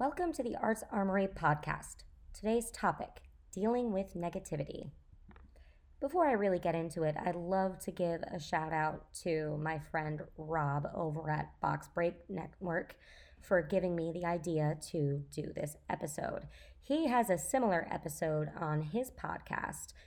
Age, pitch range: 20-39, 150-195 Hz